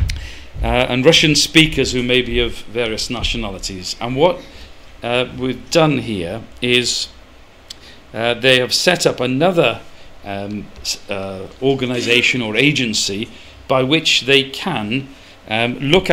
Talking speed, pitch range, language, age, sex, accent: 125 wpm, 100-130 Hz, English, 50-69, male, British